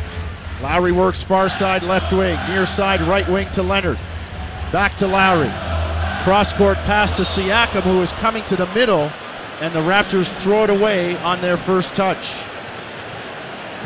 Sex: male